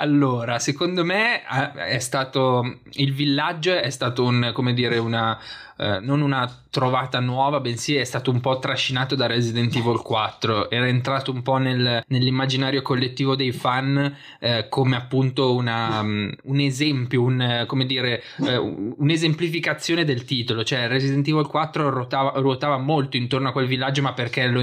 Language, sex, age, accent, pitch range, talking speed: Italian, male, 20-39, native, 125-140 Hz, 155 wpm